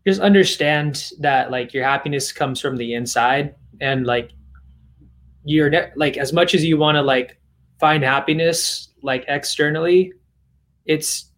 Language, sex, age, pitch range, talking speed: English, male, 20-39, 130-165 Hz, 140 wpm